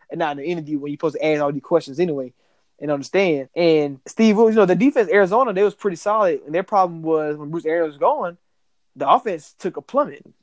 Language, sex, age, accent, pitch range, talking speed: English, male, 20-39, American, 155-195 Hz, 235 wpm